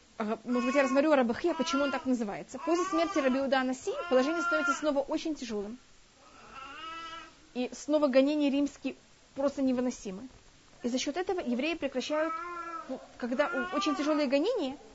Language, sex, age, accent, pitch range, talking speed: Russian, female, 30-49, native, 250-300 Hz, 150 wpm